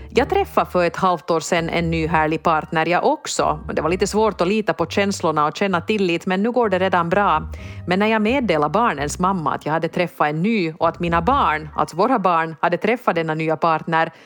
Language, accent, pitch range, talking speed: Swedish, Finnish, 155-190 Hz, 225 wpm